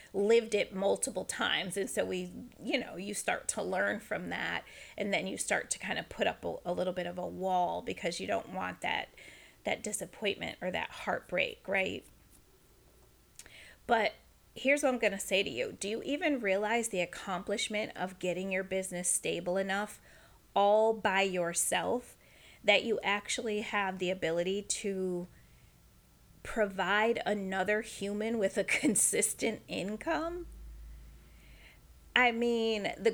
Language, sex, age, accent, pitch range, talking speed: English, female, 30-49, American, 185-230 Hz, 150 wpm